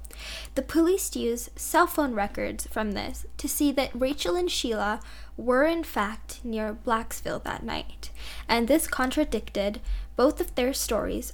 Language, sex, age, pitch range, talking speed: English, female, 10-29, 215-275 Hz, 150 wpm